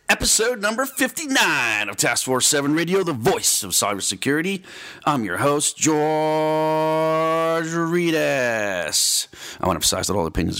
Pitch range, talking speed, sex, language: 85-140 Hz, 135 wpm, male, English